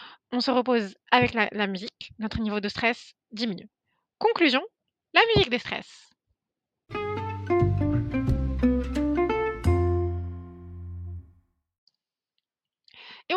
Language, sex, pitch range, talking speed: French, female, 215-300 Hz, 80 wpm